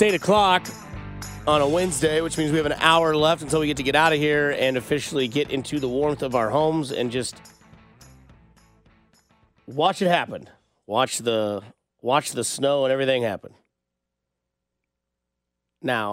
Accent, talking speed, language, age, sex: American, 160 wpm, English, 30-49, male